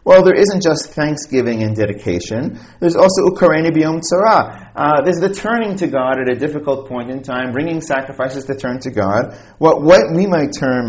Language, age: English, 30-49